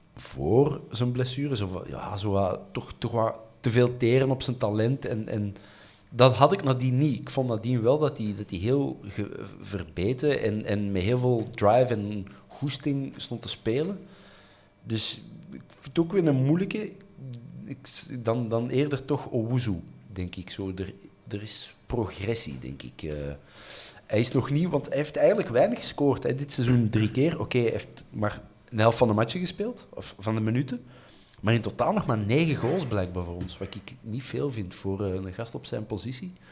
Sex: male